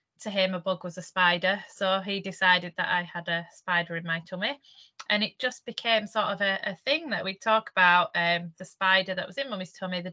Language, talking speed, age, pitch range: English, 235 wpm, 20-39, 175-200 Hz